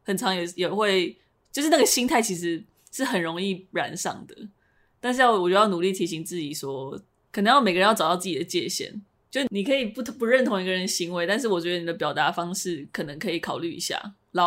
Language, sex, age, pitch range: Chinese, female, 20-39, 175-210 Hz